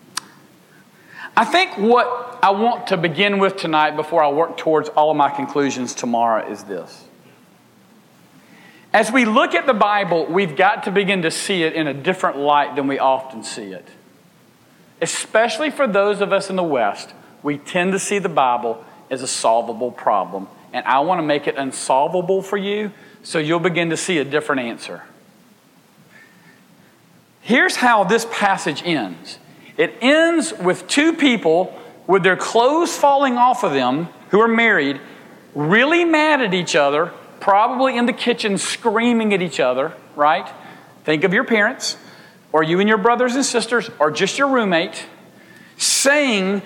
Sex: male